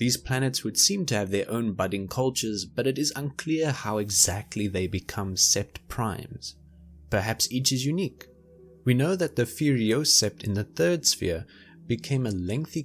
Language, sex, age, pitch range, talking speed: English, male, 20-39, 95-135 Hz, 175 wpm